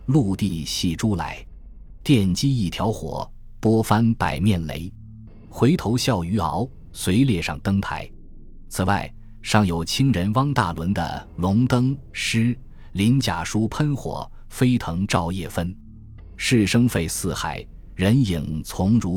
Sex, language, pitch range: male, Chinese, 85-115 Hz